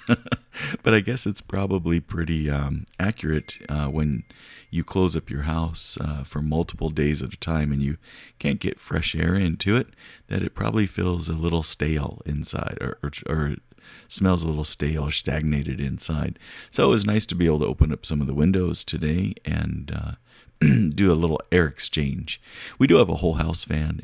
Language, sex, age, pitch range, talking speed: English, male, 40-59, 75-95 Hz, 190 wpm